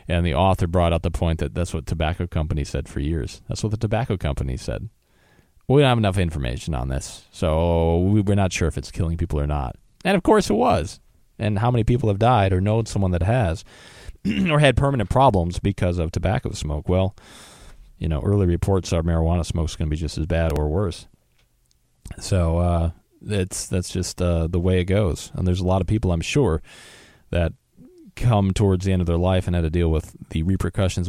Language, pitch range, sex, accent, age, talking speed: English, 80-100 Hz, male, American, 30-49, 220 wpm